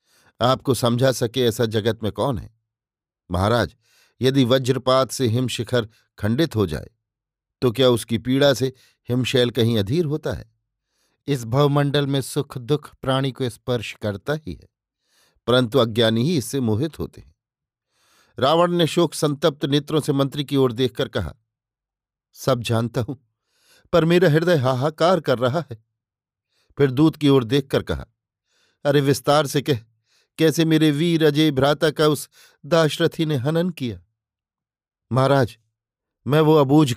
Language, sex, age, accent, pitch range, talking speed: Hindi, male, 50-69, native, 115-145 Hz, 145 wpm